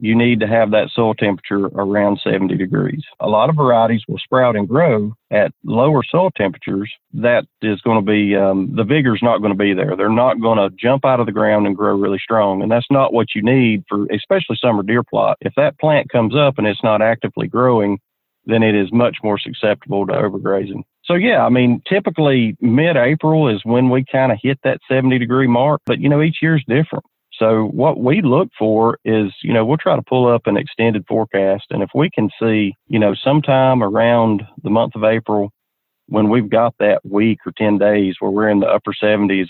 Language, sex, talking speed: English, male, 210 wpm